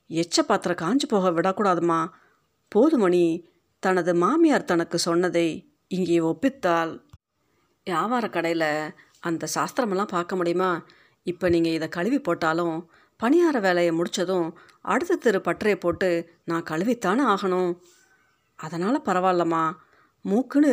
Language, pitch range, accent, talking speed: Tamil, 170-220 Hz, native, 105 wpm